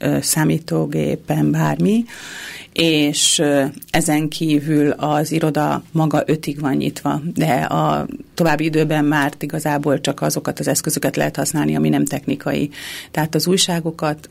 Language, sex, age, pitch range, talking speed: Hungarian, female, 40-59, 135-155 Hz, 120 wpm